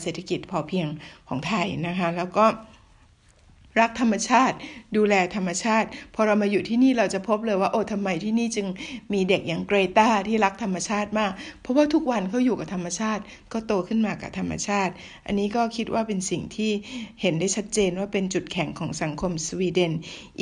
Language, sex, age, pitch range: Thai, female, 60-79, 180-225 Hz